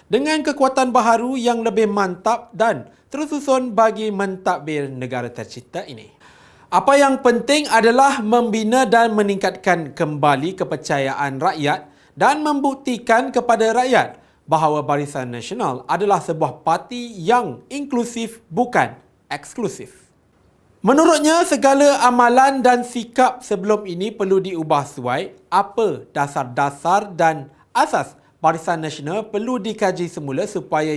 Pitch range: 160-245 Hz